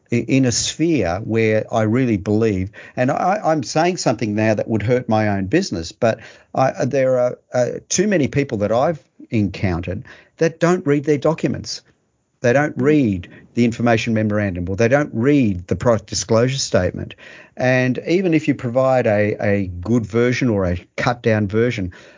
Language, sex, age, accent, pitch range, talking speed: English, male, 50-69, Australian, 100-130 Hz, 165 wpm